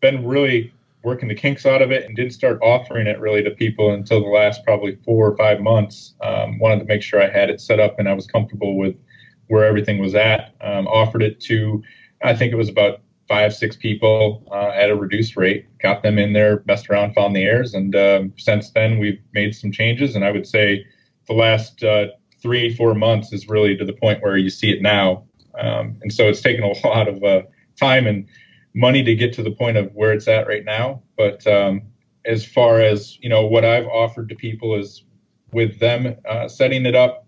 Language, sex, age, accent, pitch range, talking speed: English, male, 30-49, American, 105-115 Hz, 225 wpm